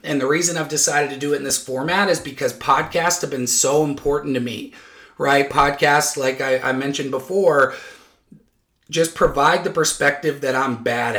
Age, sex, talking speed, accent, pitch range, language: 30-49, male, 180 wpm, American, 130-165 Hz, English